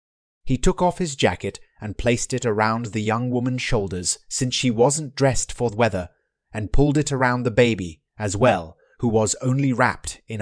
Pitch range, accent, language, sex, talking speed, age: 110-140 Hz, British, English, male, 190 wpm, 30-49